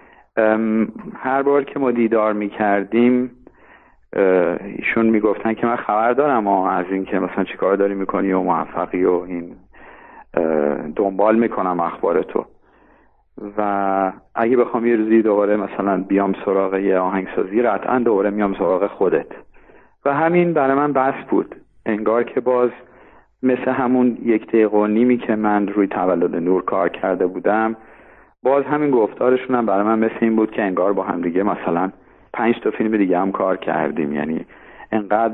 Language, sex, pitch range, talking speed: Persian, male, 100-120 Hz, 150 wpm